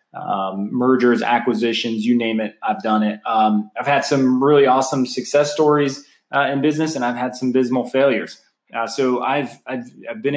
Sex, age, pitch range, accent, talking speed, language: male, 20-39, 115-135 Hz, American, 180 wpm, English